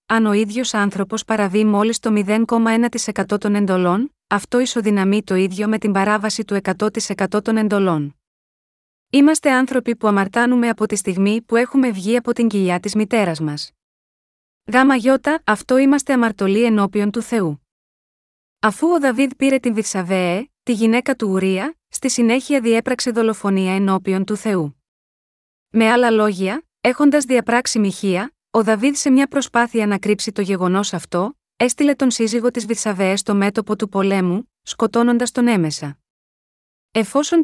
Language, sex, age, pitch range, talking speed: Greek, female, 30-49, 200-245 Hz, 145 wpm